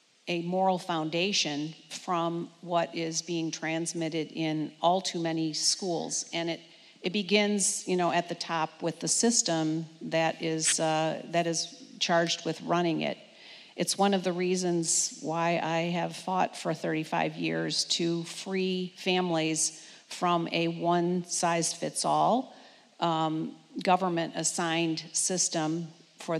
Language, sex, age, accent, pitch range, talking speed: English, female, 50-69, American, 165-180 Hz, 125 wpm